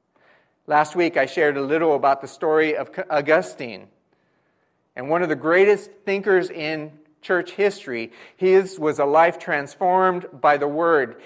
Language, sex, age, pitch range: English, male, 40-59, 140-185 Hz